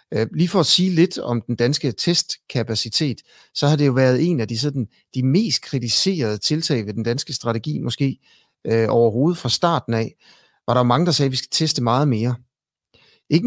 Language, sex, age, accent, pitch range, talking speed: Danish, male, 60-79, native, 115-140 Hz, 200 wpm